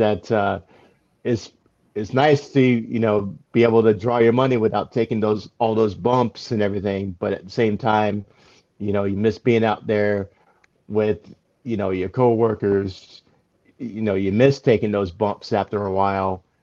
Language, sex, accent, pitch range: English, male, American, 100-115 Hz